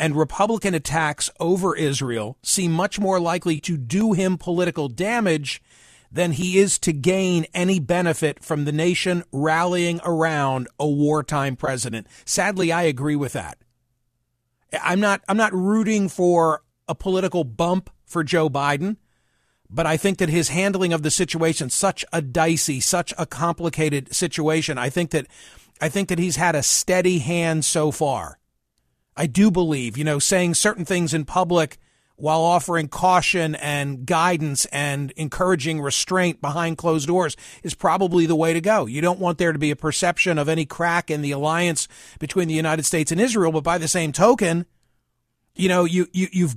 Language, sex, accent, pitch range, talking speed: English, male, American, 150-185 Hz, 170 wpm